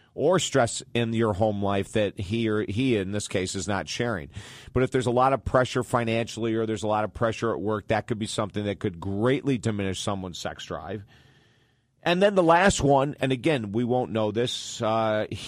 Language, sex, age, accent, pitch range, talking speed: English, male, 50-69, American, 105-125 Hz, 215 wpm